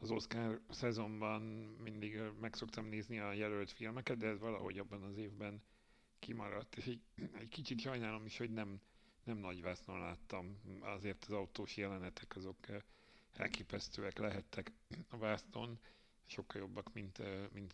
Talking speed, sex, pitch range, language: 140 wpm, male, 100-110 Hz, Hungarian